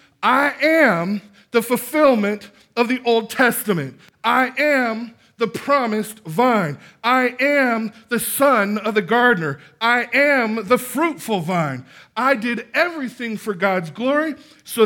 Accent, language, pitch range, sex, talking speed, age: American, English, 140-230 Hz, male, 130 wpm, 50-69